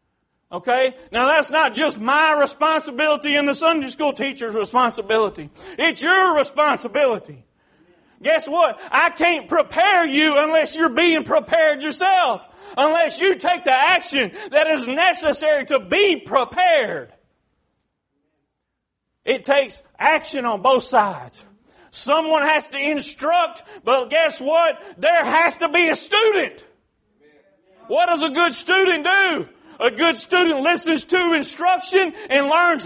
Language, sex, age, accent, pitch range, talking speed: English, male, 40-59, American, 270-340 Hz, 130 wpm